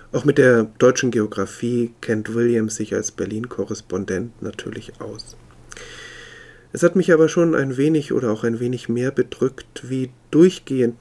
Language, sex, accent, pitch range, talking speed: German, male, German, 115-140 Hz, 145 wpm